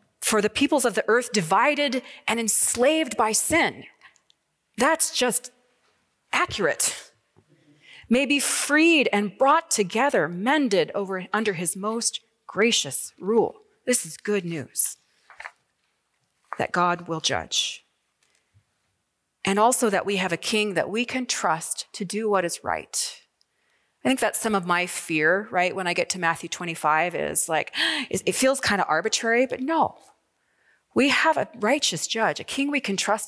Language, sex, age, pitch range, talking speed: English, female, 30-49, 180-250 Hz, 150 wpm